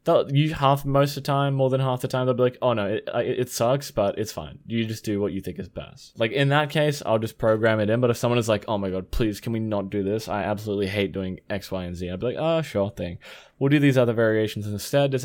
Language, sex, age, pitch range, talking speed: English, male, 20-39, 105-135 Hz, 295 wpm